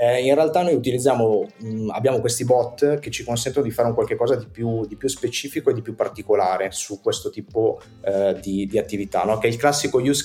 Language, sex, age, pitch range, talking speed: Italian, male, 30-49, 105-135 Hz, 205 wpm